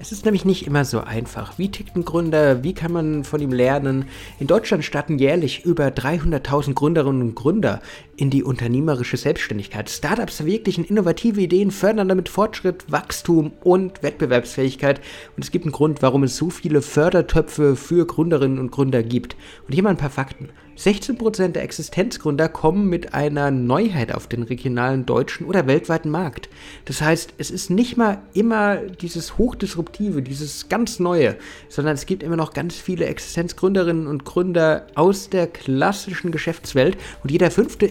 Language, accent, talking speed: German, German, 165 wpm